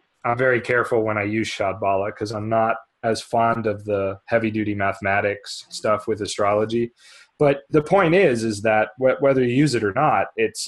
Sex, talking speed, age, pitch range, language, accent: male, 185 wpm, 20-39, 100-120 Hz, English, American